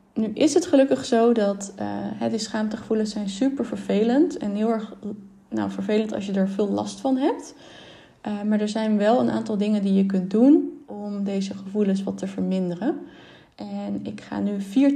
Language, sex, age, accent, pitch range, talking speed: Dutch, female, 20-39, Dutch, 195-235 Hz, 185 wpm